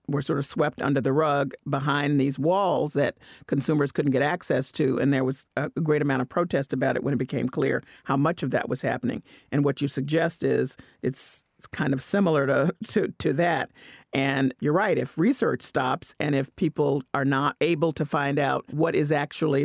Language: English